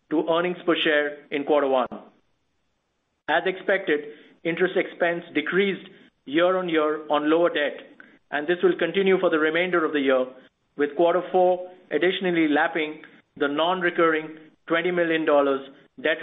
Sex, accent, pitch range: male, Indian, 145-170 Hz